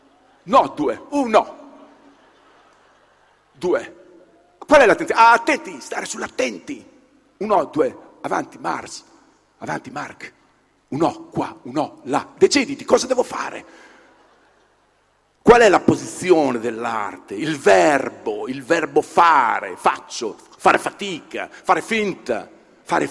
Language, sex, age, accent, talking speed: Italian, male, 50-69, native, 105 wpm